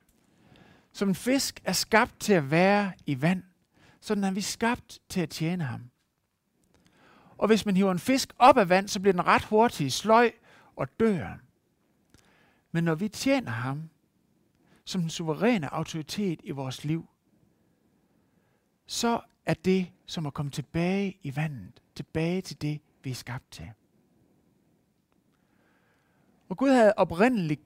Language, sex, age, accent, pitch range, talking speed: Danish, male, 60-79, native, 155-215 Hz, 150 wpm